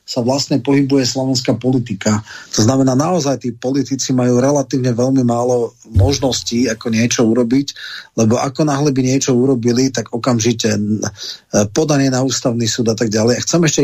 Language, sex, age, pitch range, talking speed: Slovak, male, 30-49, 115-135 Hz, 155 wpm